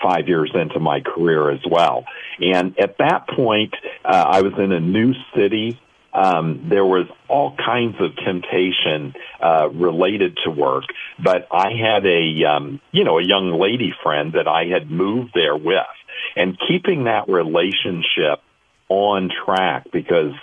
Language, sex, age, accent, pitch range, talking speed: English, male, 50-69, American, 85-100 Hz, 155 wpm